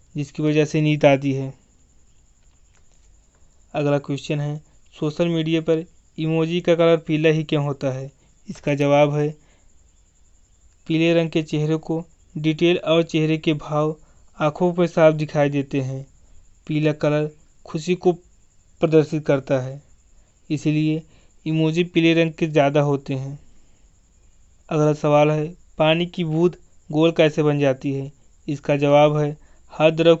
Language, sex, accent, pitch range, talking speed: Hindi, male, native, 145-160 Hz, 140 wpm